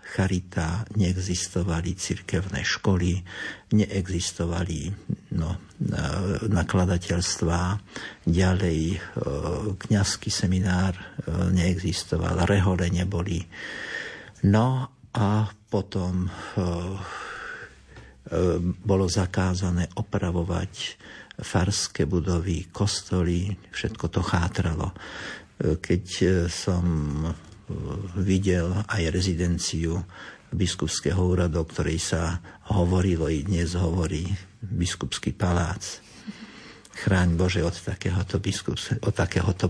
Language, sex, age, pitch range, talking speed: Slovak, male, 60-79, 85-100 Hz, 75 wpm